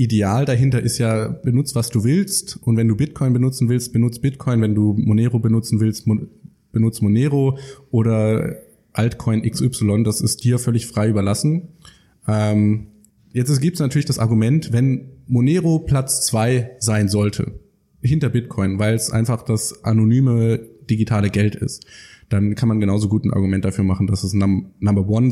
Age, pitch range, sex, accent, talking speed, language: 20-39, 105-125 Hz, male, German, 160 wpm, German